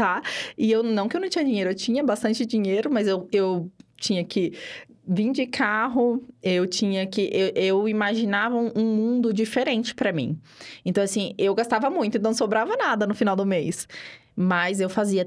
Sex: female